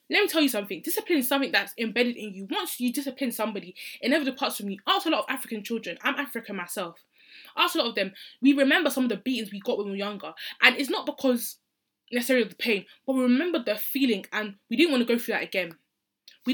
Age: 20-39